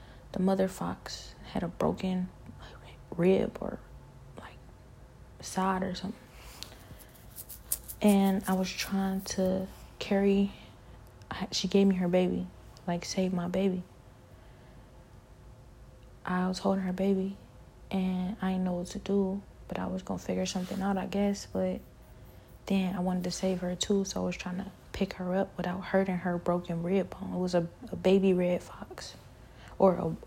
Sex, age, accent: female, 20-39, American